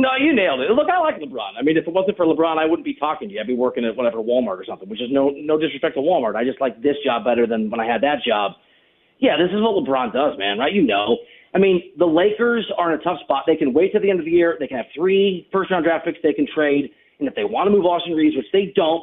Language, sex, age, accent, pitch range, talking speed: English, male, 40-59, American, 135-170 Hz, 305 wpm